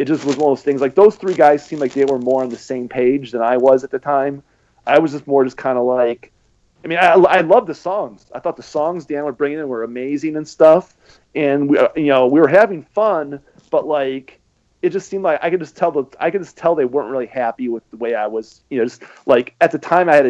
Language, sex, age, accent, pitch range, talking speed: English, male, 30-49, American, 125-155 Hz, 280 wpm